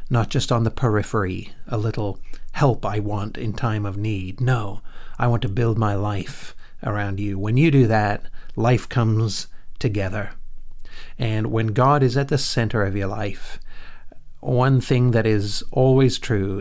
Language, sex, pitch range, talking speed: English, male, 105-135 Hz, 165 wpm